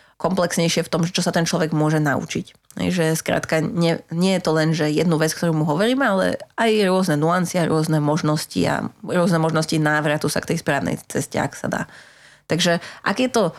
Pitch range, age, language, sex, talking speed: 150-170 Hz, 20-39, Slovak, female, 195 wpm